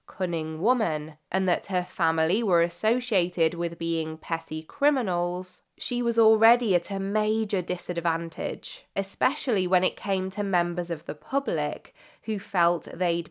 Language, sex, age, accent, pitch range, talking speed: English, female, 20-39, British, 165-200 Hz, 140 wpm